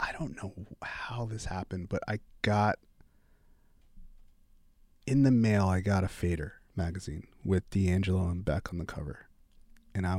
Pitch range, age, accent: 90-110 Hz, 20-39, American